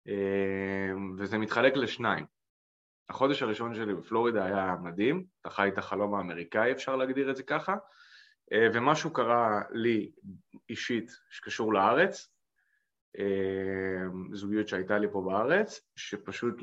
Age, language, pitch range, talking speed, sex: 20-39, English, 95-125 Hz, 110 wpm, male